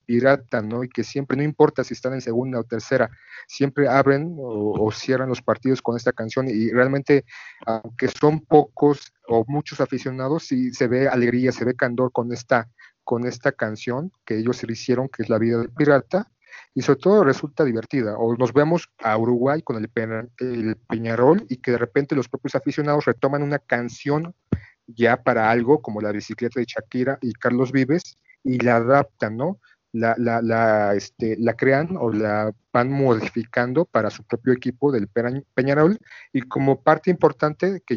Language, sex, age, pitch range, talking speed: Spanish, male, 40-59, 120-140 Hz, 180 wpm